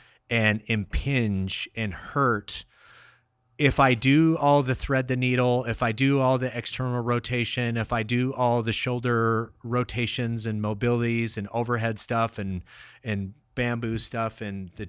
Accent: American